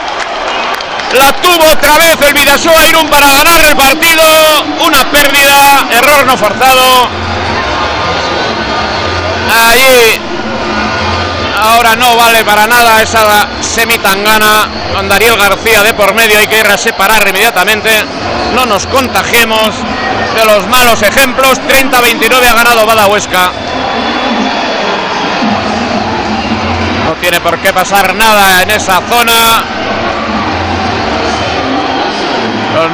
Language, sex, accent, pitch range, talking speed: Spanish, male, Spanish, 210-250 Hz, 105 wpm